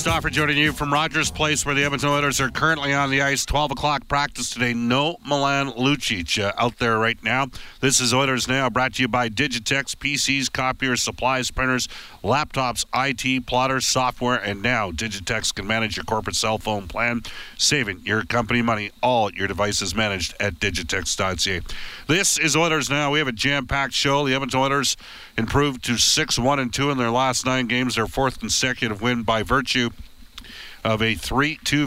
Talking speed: 180 wpm